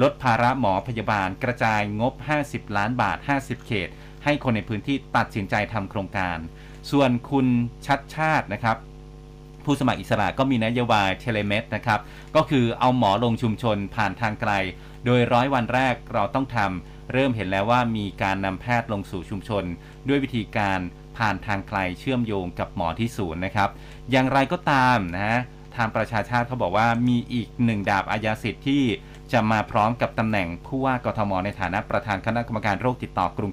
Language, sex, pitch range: Thai, male, 100-135 Hz